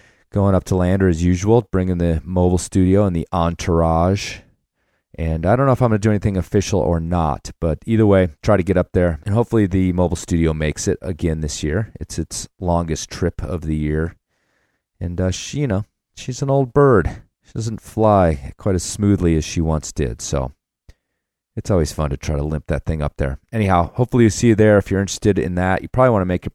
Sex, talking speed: male, 225 wpm